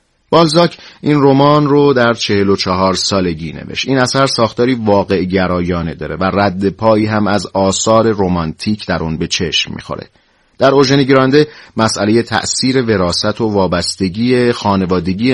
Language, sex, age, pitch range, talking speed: Persian, male, 30-49, 95-125 Hz, 140 wpm